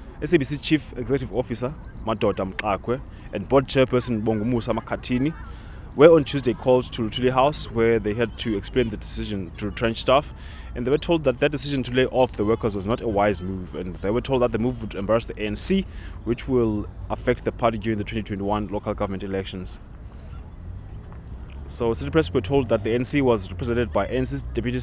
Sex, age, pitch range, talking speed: male, 20-39, 100-130 Hz, 195 wpm